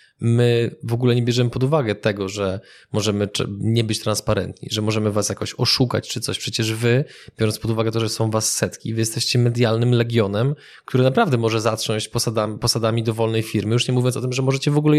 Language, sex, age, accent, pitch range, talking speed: Polish, male, 20-39, native, 115-140 Hz, 205 wpm